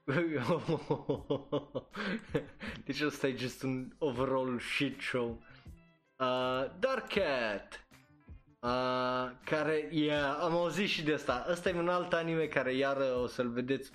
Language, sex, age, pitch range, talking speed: Romanian, male, 20-39, 120-150 Hz, 125 wpm